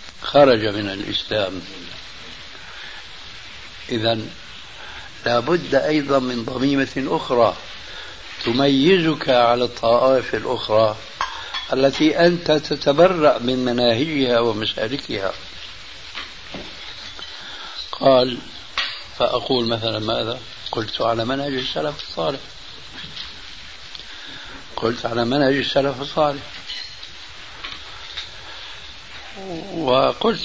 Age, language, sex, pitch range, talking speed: 60-79, Arabic, male, 110-135 Hz, 65 wpm